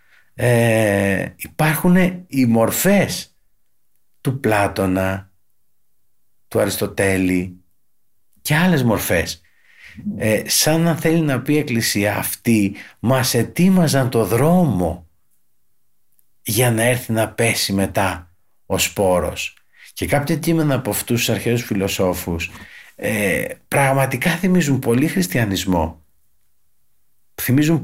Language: Greek